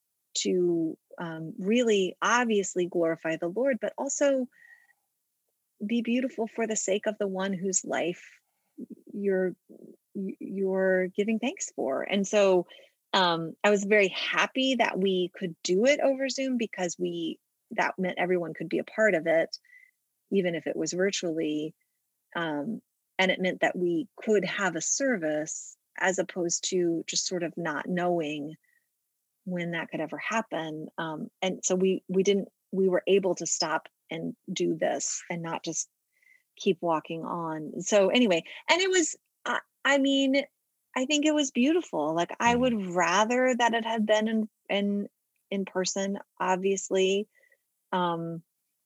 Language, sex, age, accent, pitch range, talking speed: English, female, 30-49, American, 175-235 Hz, 150 wpm